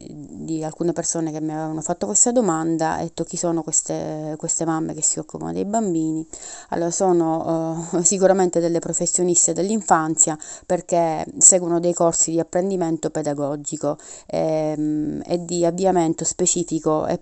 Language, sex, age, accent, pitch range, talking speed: Italian, female, 30-49, native, 155-175 Hz, 135 wpm